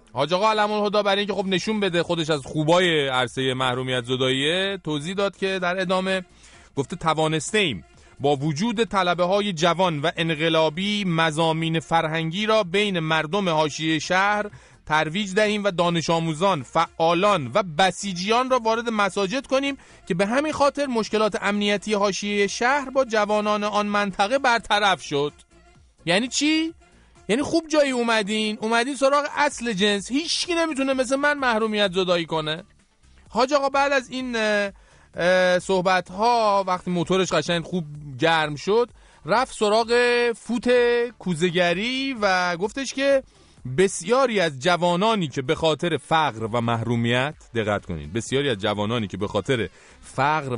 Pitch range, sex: 155-215 Hz, male